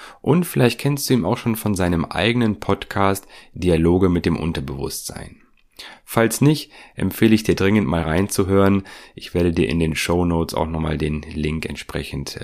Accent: German